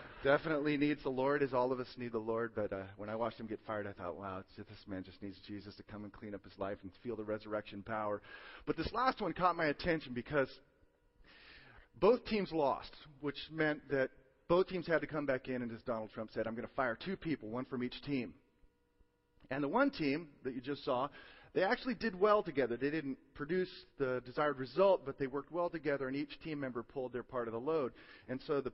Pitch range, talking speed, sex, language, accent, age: 115-165 Hz, 235 wpm, male, English, American, 40-59